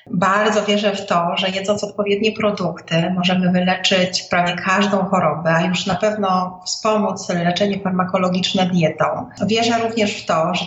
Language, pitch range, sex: Polish, 180-205 Hz, female